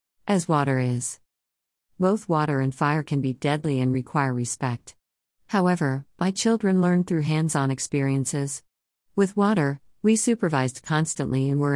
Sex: female